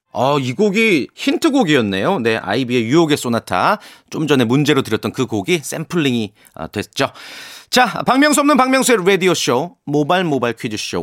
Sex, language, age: male, Korean, 40-59